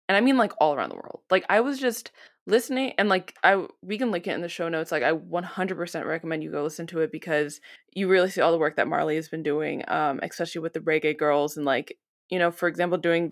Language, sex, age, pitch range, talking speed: English, female, 20-39, 165-195 Hz, 265 wpm